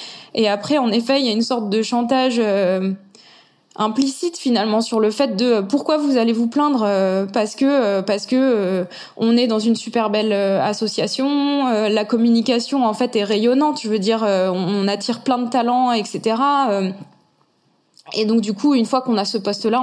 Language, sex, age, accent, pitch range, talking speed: French, female, 20-39, French, 200-240 Hz, 205 wpm